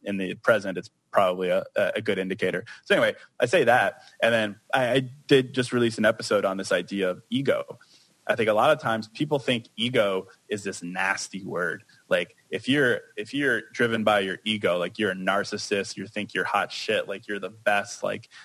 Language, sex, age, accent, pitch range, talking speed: English, male, 20-39, American, 95-115 Hz, 210 wpm